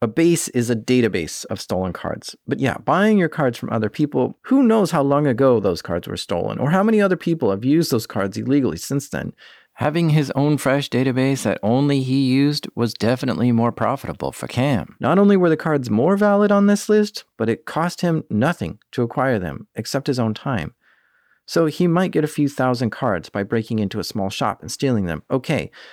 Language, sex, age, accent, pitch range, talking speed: English, male, 40-59, American, 115-150 Hz, 215 wpm